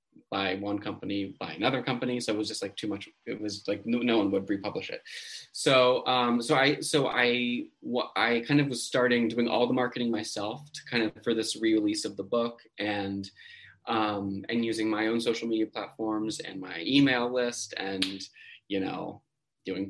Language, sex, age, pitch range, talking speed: English, male, 20-39, 105-135 Hz, 195 wpm